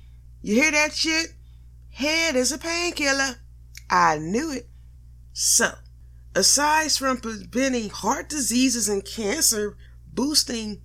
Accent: American